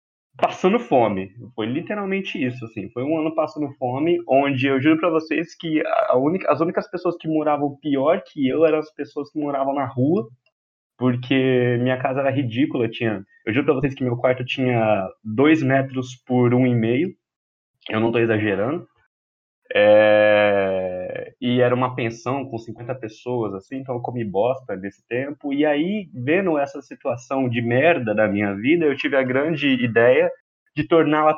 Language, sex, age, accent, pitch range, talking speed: Portuguese, male, 20-39, Brazilian, 115-155 Hz, 170 wpm